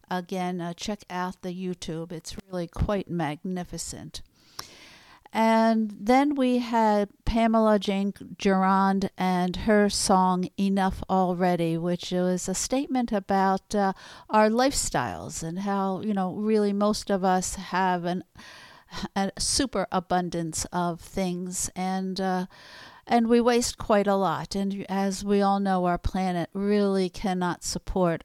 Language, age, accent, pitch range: English, 60-79, American, 175-205 Hz